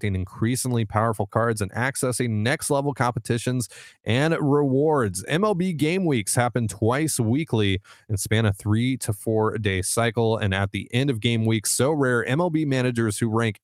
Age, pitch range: 30-49, 100-130 Hz